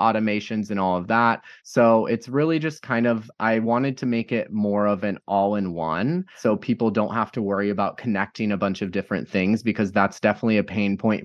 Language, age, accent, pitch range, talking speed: English, 20-39, American, 105-125 Hz, 220 wpm